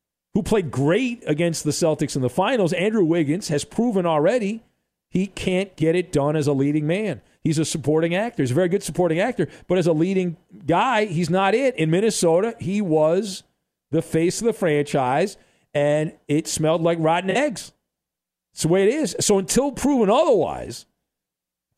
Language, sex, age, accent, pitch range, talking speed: English, male, 40-59, American, 145-190 Hz, 180 wpm